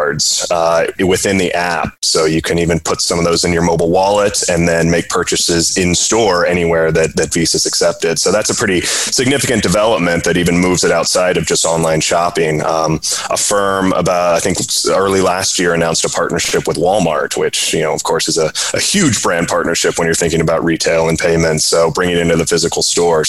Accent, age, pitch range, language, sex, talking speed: American, 30-49, 85-100 Hz, English, male, 210 wpm